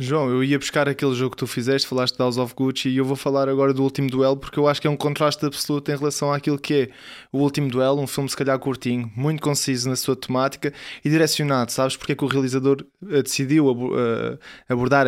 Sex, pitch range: male, 135-165 Hz